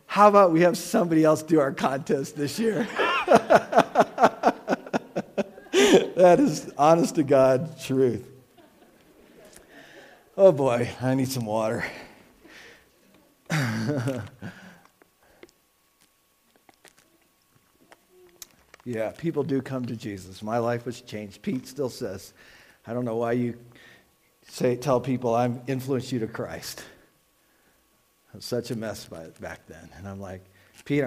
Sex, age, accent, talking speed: male, 50-69, American, 115 wpm